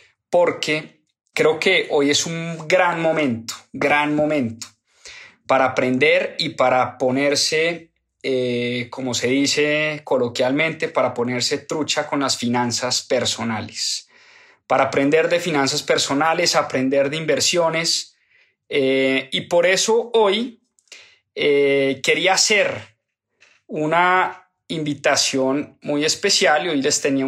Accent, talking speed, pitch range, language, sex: Colombian, 110 wpm, 135-180 Hz, Spanish, male